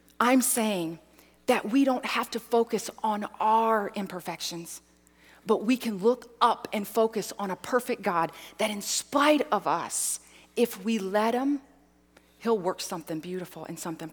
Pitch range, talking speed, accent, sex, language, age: 170-230 Hz, 155 wpm, American, female, English, 40-59